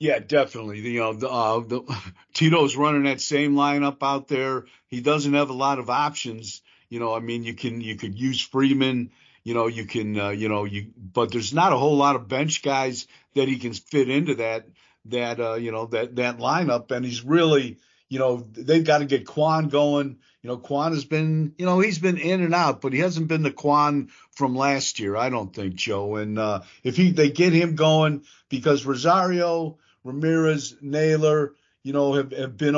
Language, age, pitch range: English, 50-69, 125-150 Hz